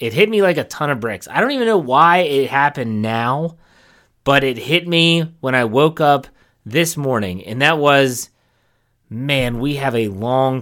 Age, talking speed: 30-49, 190 wpm